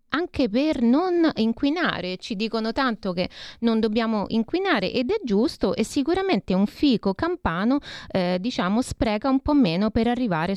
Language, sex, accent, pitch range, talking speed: Italian, female, native, 185-255 Hz, 155 wpm